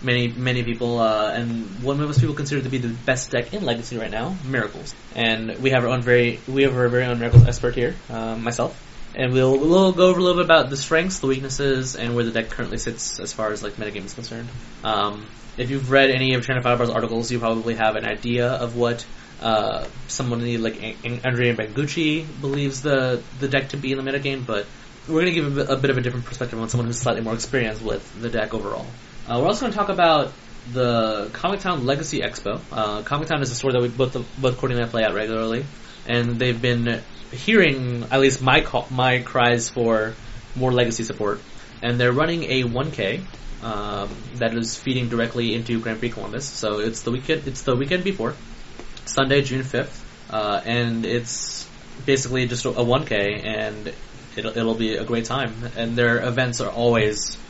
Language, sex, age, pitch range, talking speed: English, male, 20-39, 115-135 Hz, 210 wpm